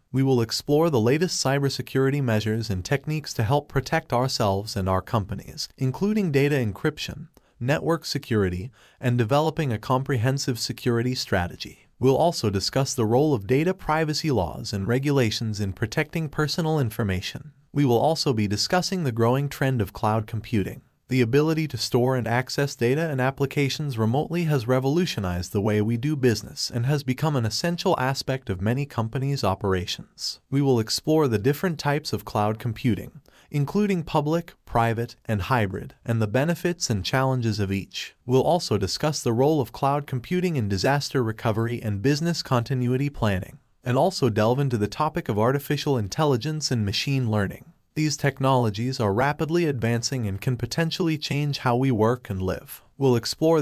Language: English